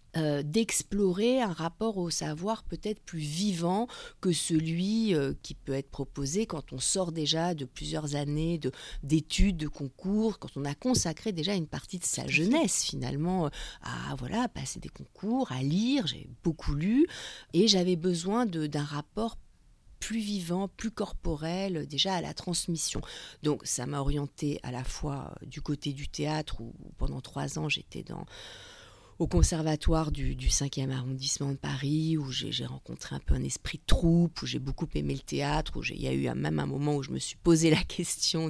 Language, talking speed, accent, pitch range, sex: French, 180 wpm, French, 145-190 Hz, female